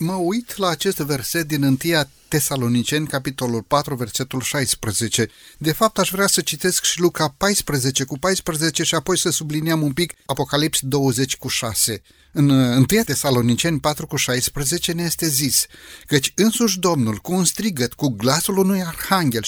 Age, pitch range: 30-49, 135-180 Hz